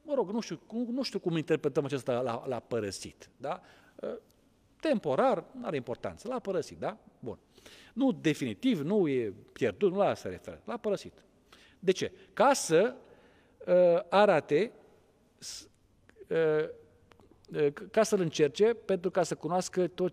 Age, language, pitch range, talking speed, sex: 40-59, Romanian, 120-190 Hz, 140 wpm, male